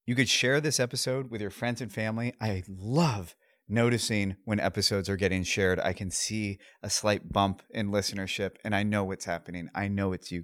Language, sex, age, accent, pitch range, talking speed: English, male, 30-49, American, 95-120 Hz, 200 wpm